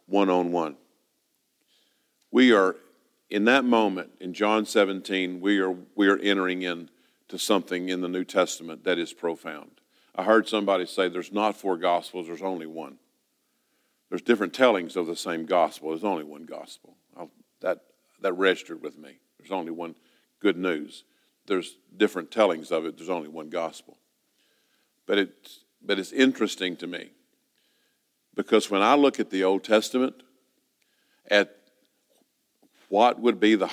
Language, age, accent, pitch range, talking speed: English, 50-69, American, 90-120 Hz, 150 wpm